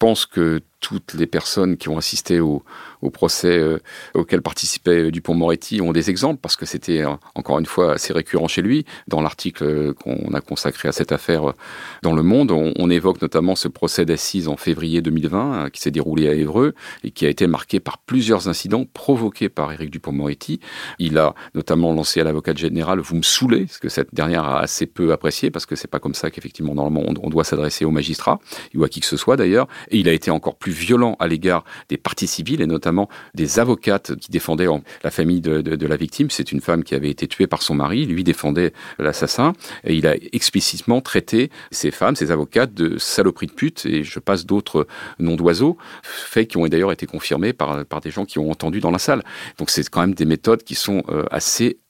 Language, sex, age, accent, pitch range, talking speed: French, male, 40-59, French, 75-95 Hz, 225 wpm